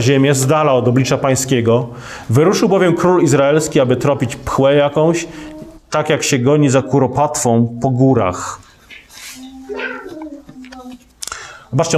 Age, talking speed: 40-59, 115 wpm